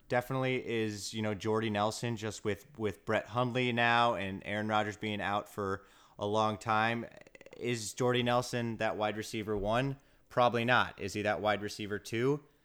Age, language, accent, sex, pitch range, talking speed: 20-39, English, American, male, 100-120 Hz, 170 wpm